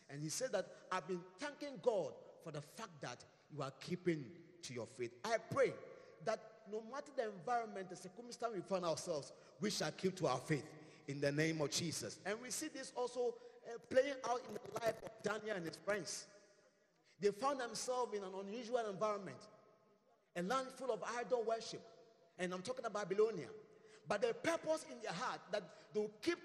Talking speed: 190 wpm